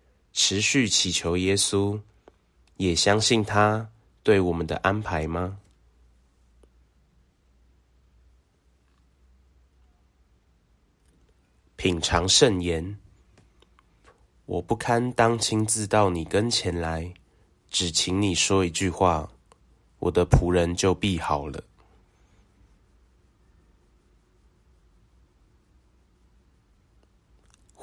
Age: 20-39